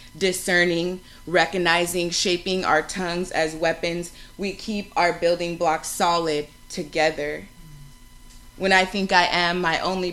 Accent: American